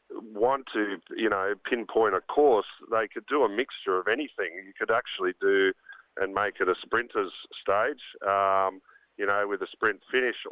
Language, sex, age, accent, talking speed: English, male, 40-59, Australian, 175 wpm